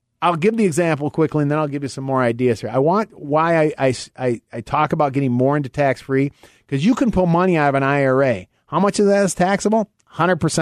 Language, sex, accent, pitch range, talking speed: English, male, American, 135-180 Hz, 230 wpm